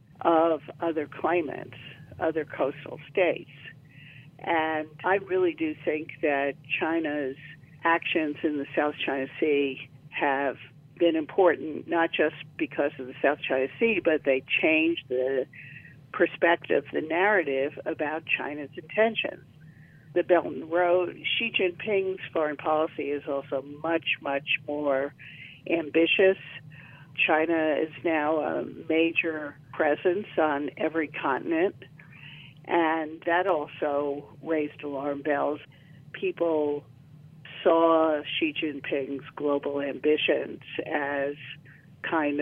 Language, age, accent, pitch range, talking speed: English, 50-69, American, 145-165 Hz, 110 wpm